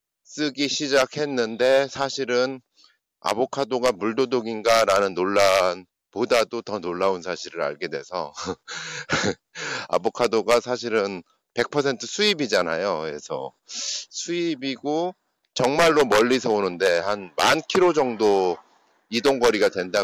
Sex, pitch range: male, 110-155 Hz